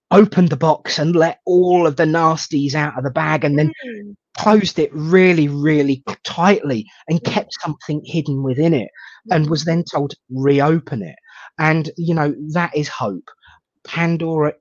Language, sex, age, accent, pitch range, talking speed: English, male, 30-49, British, 145-185 Hz, 160 wpm